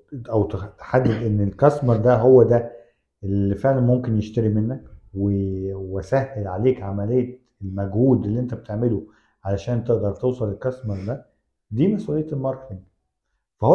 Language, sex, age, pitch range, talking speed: Arabic, male, 50-69, 100-130 Hz, 120 wpm